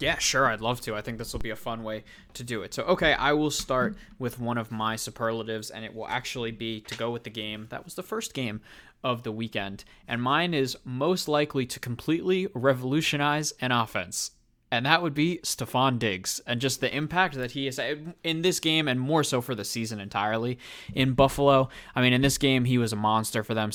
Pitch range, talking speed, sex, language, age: 110-140 Hz, 225 wpm, male, English, 20-39